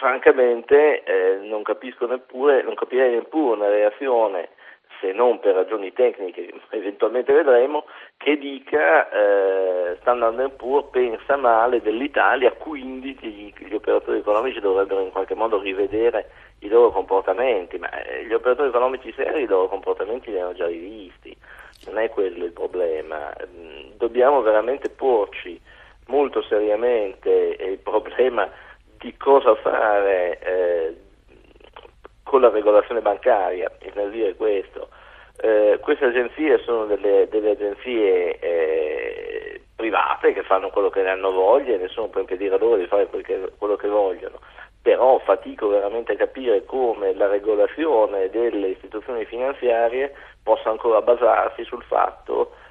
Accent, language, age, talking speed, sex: native, Italian, 50-69, 135 wpm, male